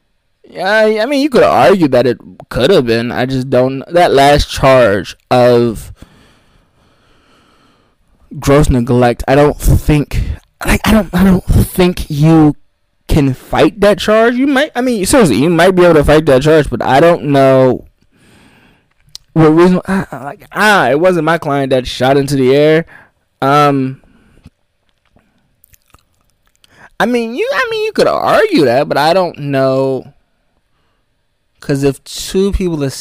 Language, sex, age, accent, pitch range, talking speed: English, male, 20-39, American, 125-155 Hz, 155 wpm